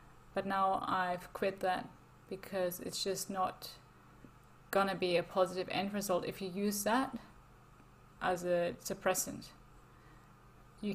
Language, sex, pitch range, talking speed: English, female, 200-235 Hz, 130 wpm